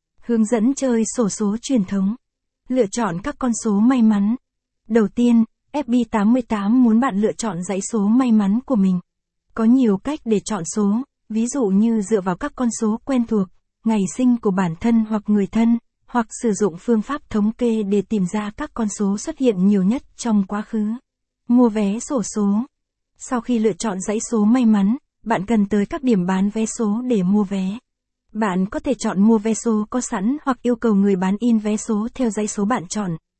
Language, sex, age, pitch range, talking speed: Vietnamese, female, 20-39, 205-240 Hz, 210 wpm